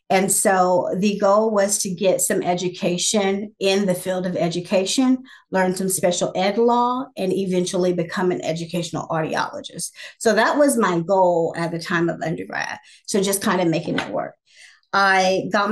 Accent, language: American, English